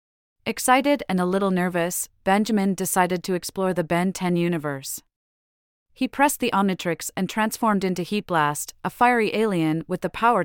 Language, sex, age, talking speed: English, female, 30-49, 155 wpm